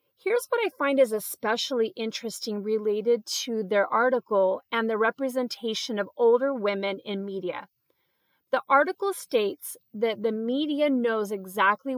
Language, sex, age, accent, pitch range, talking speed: English, female, 30-49, American, 200-265 Hz, 135 wpm